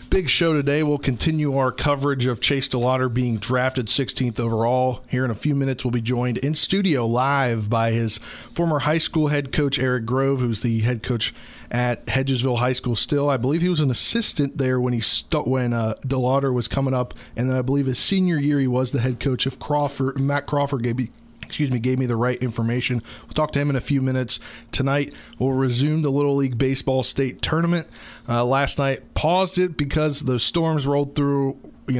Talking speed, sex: 210 wpm, male